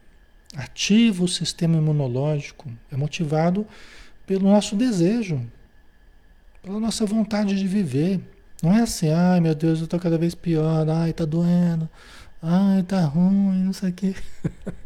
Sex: male